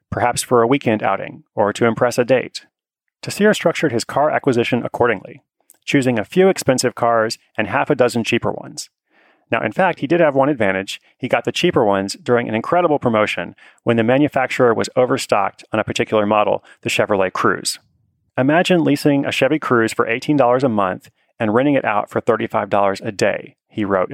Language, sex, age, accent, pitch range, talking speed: English, male, 30-49, American, 110-145 Hz, 185 wpm